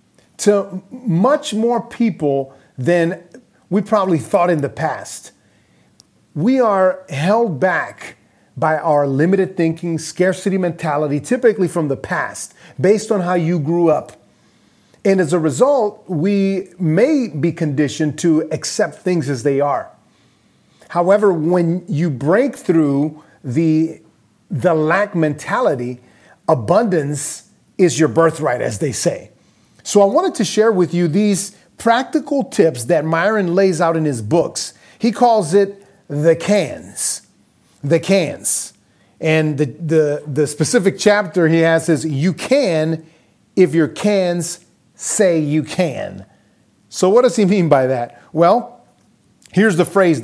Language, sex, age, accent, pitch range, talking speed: English, male, 30-49, American, 155-200 Hz, 135 wpm